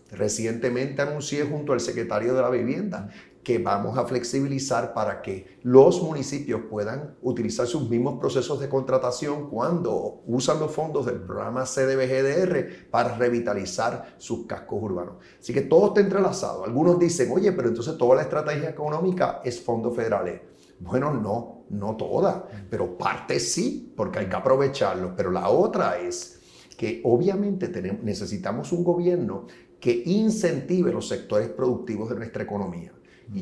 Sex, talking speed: male, 145 wpm